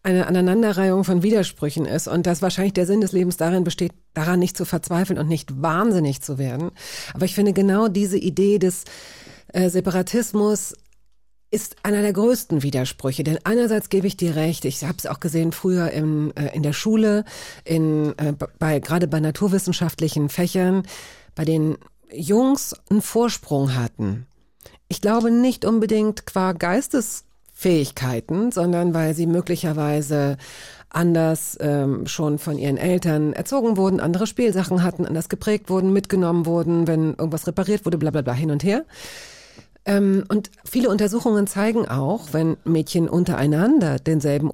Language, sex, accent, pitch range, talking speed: German, female, German, 155-195 Hz, 155 wpm